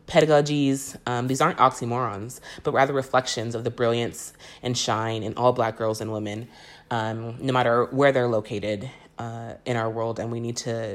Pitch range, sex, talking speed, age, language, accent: 115-135 Hz, female, 180 wpm, 30-49, English, American